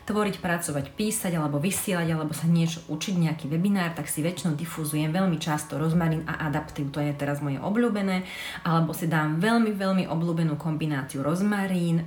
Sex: female